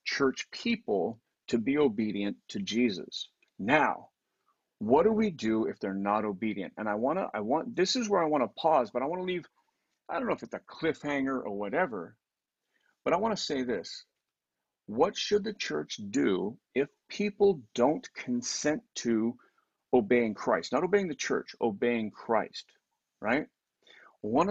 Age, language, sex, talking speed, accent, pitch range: 50-69, English, male, 170 wpm, American, 105-180 Hz